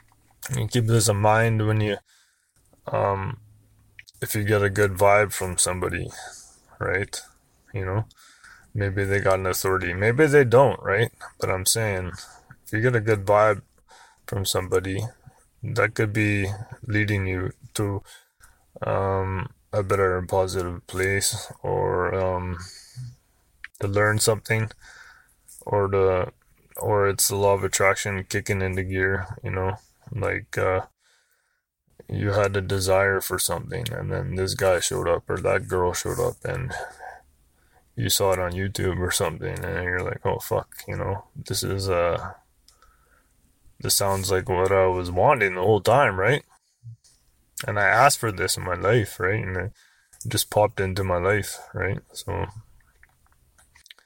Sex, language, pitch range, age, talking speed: male, English, 95-110 Hz, 20-39, 150 wpm